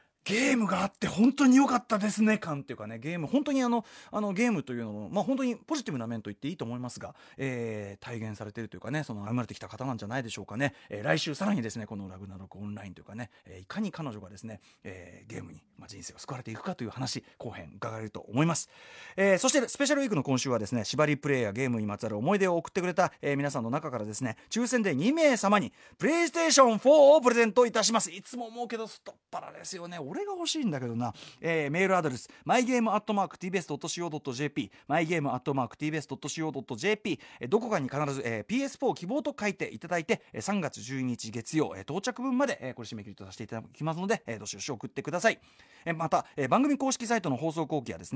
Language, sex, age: Japanese, male, 30-49